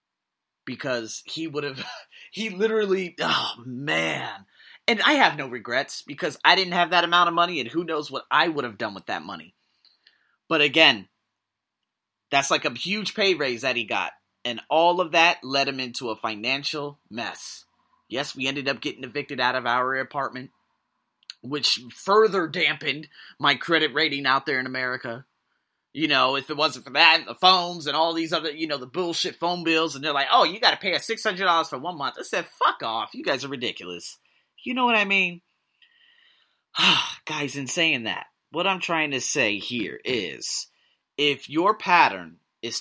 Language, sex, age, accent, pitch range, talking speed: English, male, 30-49, American, 135-175 Hz, 185 wpm